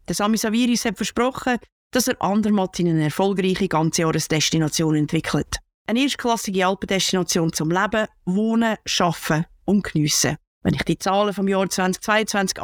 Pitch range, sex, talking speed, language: 170-220 Hz, female, 145 wpm, German